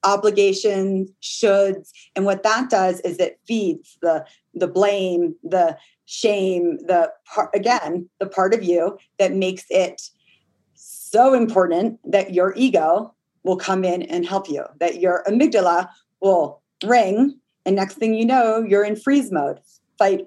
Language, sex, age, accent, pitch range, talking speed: English, female, 30-49, American, 185-250 Hz, 150 wpm